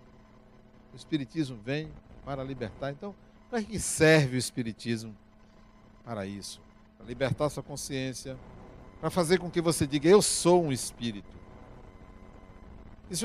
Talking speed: 135 wpm